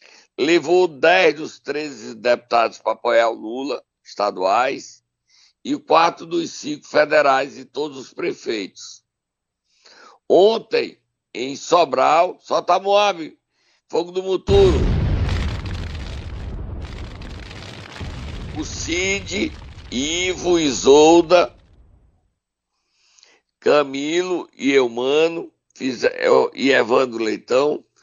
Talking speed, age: 80 wpm, 60-79